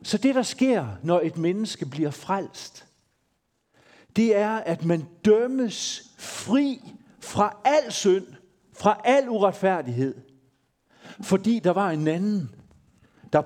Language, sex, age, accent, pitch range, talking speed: Danish, male, 50-69, native, 135-210 Hz, 120 wpm